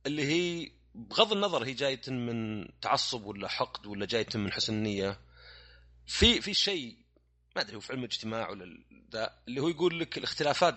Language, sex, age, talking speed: Arabic, male, 30-49, 160 wpm